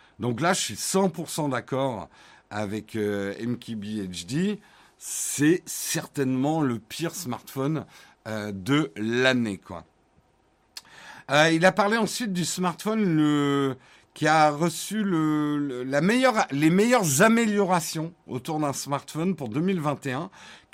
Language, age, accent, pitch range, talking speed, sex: French, 50-69, French, 140-185 Hz, 115 wpm, male